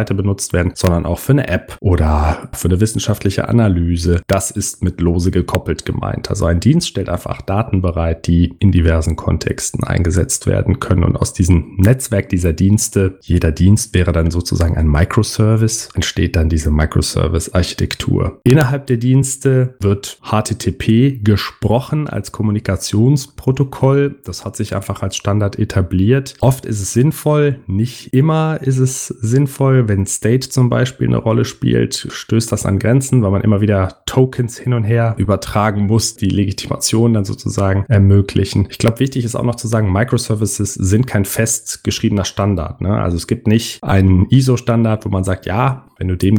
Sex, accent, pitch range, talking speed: male, German, 90-120 Hz, 165 wpm